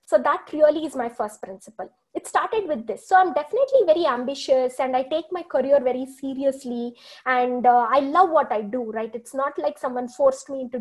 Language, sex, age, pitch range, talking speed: English, female, 20-39, 240-295 Hz, 210 wpm